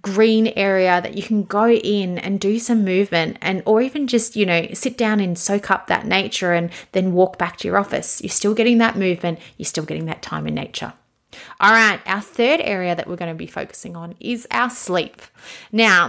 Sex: female